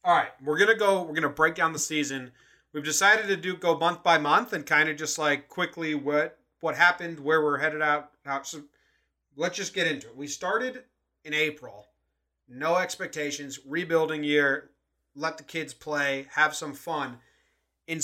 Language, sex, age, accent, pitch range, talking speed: English, male, 30-49, American, 140-180 Hz, 190 wpm